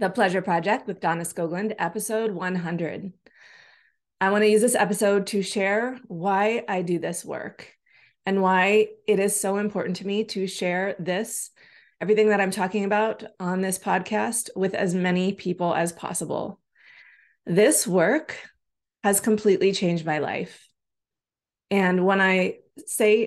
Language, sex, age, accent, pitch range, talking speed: English, female, 20-39, American, 185-210 Hz, 145 wpm